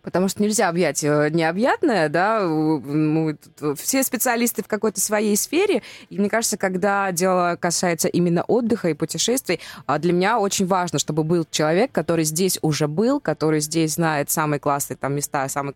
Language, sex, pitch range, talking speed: Russian, female, 155-220 Hz, 160 wpm